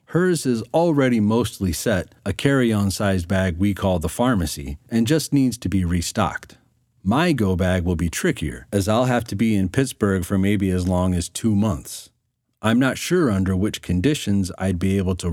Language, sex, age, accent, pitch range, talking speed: English, male, 40-59, American, 90-120 Hz, 190 wpm